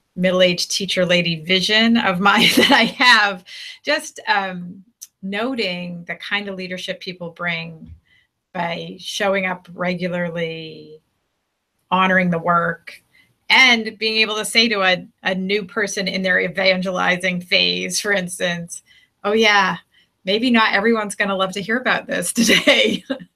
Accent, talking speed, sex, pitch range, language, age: American, 140 wpm, female, 175-210 Hz, English, 30-49